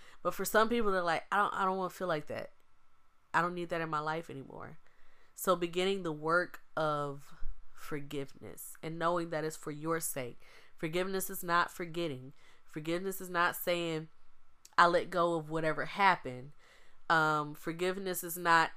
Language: English